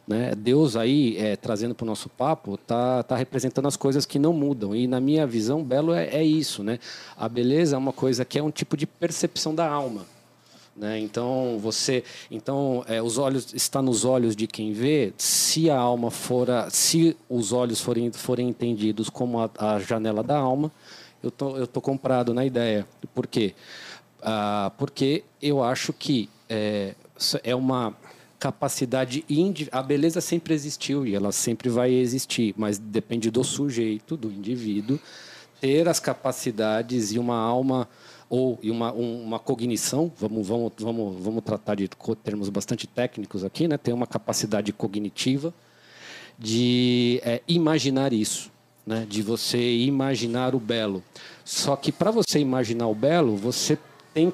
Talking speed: 155 wpm